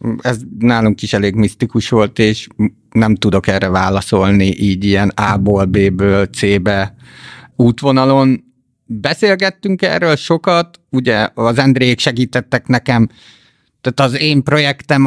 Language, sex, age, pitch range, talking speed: Hungarian, male, 50-69, 115-135 Hz, 115 wpm